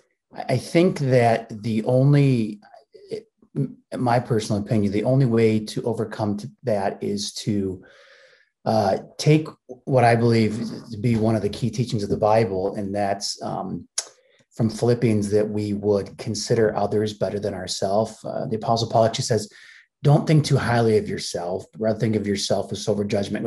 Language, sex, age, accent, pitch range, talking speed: English, male, 30-49, American, 105-130 Hz, 165 wpm